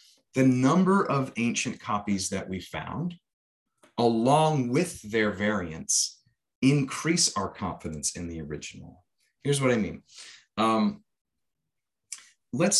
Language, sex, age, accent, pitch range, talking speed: English, male, 30-49, American, 105-140 Hz, 115 wpm